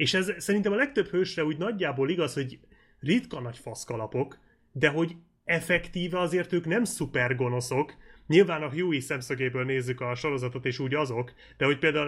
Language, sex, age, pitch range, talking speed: Hungarian, male, 30-49, 125-165 Hz, 170 wpm